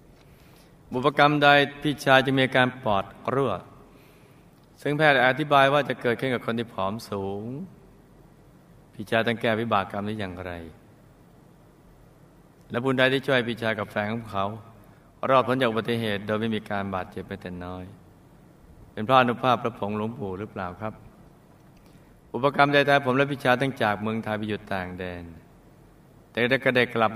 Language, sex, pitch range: Thai, male, 105-140 Hz